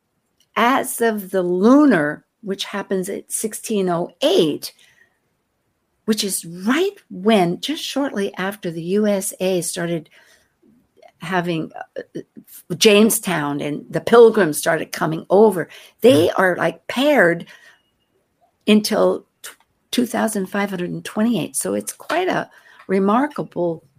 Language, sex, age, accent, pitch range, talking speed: English, female, 60-79, American, 165-225 Hz, 95 wpm